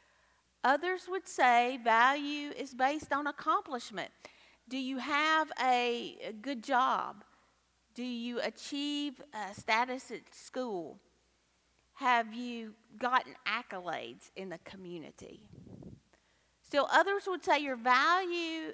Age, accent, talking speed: 40-59, American, 110 wpm